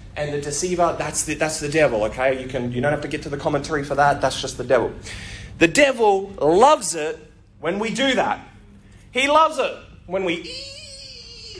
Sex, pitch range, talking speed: male, 140-235 Hz, 205 wpm